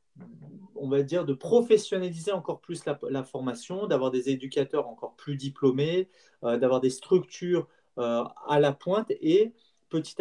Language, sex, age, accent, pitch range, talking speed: French, male, 30-49, French, 135-170 Hz, 155 wpm